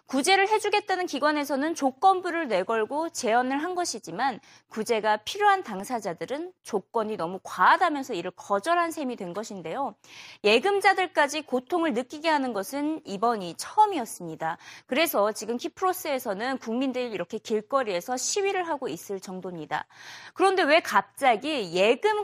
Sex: female